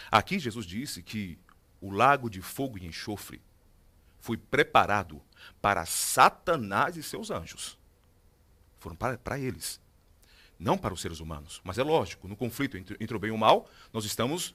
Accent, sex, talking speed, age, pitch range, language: Brazilian, male, 165 wpm, 40-59, 95-145 Hz, Portuguese